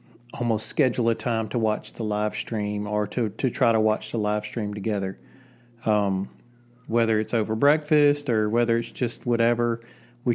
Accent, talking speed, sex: American, 175 wpm, male